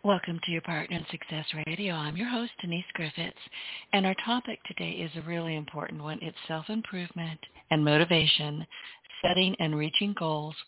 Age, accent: 50-69, American